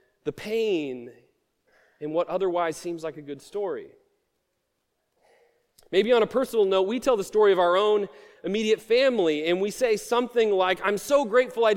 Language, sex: English, male